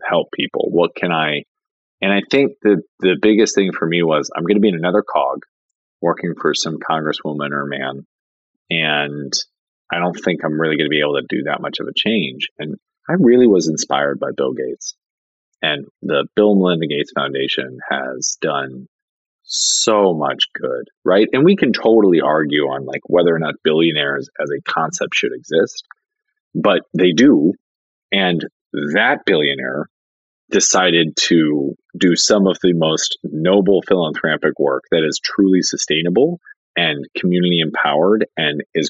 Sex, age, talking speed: male, 30-49, 165 wpm